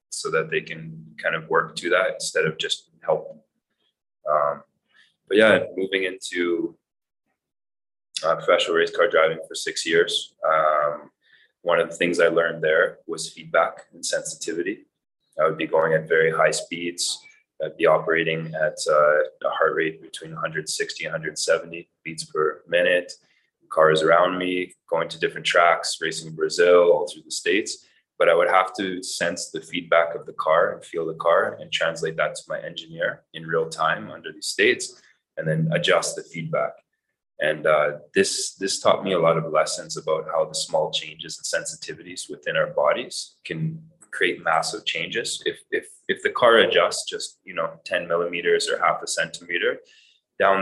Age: 20-39